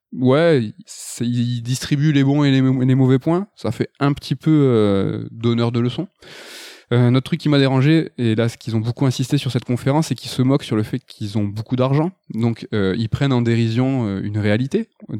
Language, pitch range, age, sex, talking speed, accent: French, 110-140 Hz, 20-39, male, 225 wpm, French